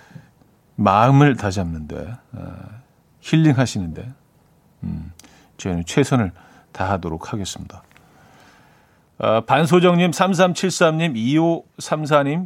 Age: 40-59